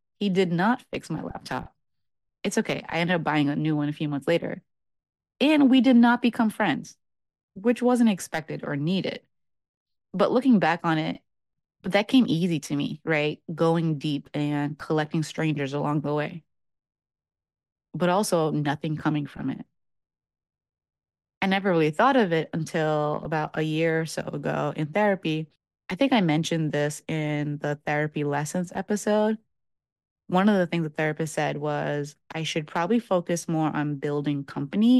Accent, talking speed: American, 165 wpm